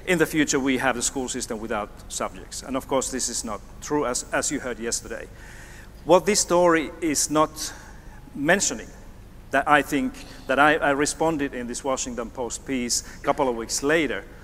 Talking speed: 185 wpm